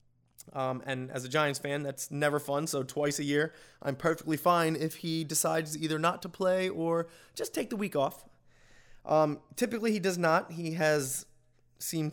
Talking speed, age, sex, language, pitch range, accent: 185 wpm, 20-39, male, English, 130-165 Hz, American